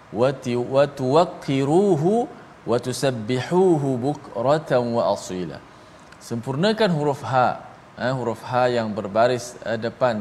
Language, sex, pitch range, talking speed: Malayalam, male, 110-130 Hz, 70 wpm